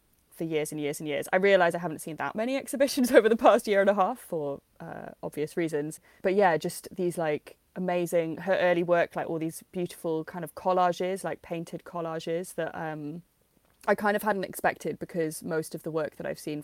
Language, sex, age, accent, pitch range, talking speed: English, female, 20-39, British, 155-190 Hz, 215 wpm